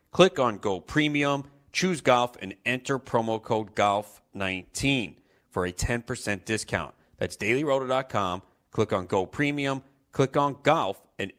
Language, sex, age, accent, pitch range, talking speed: English, male, 30-49, American, 95-125 Hz, 140 wpm